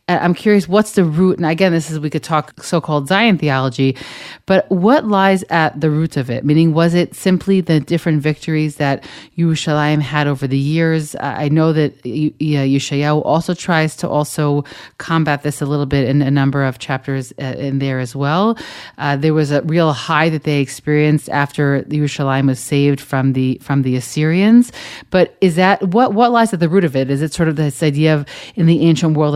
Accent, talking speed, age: American, 200 wpm, 30-49